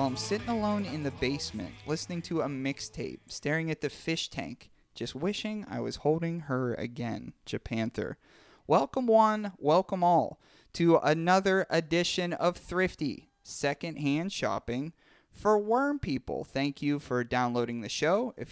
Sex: male